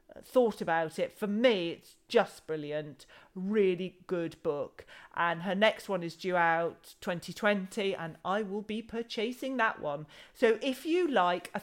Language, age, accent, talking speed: English, 40-59, British, 160 wpm